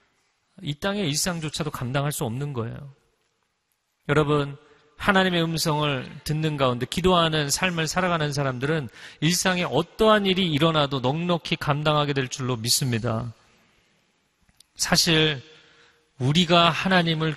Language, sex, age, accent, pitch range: Korean, male, 40-59, native, 125-155 Hz